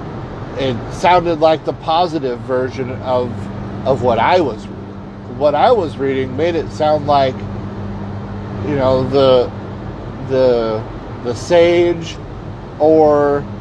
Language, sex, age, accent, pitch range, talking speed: English, male, 50-69, American, 110-150 Hz, 115 wpm